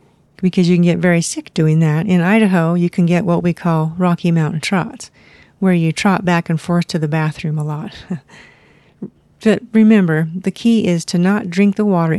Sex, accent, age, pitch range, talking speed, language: female, American, 50-69, 165-195 Hz, 195 wpm, English